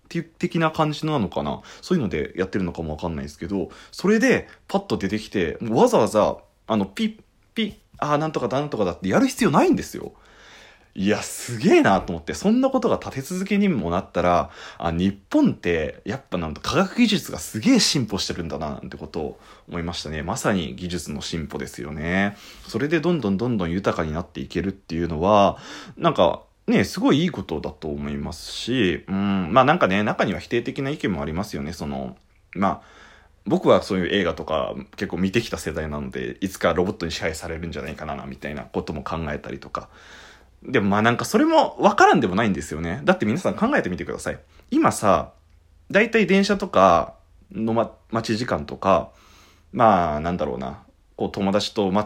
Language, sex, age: Japanese, male, 20-39